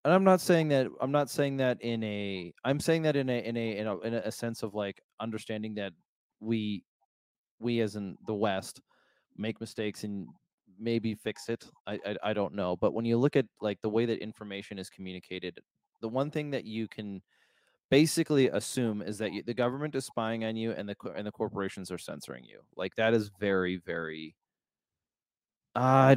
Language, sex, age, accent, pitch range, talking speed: English, male, 20-39, American, 100-125 Hz, 200 wpm